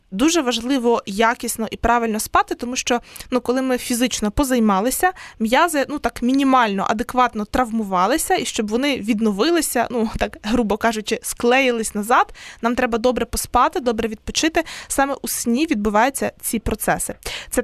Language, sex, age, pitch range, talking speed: Ukrainian, female, 20-39, 225-275 Hz, 145 wpm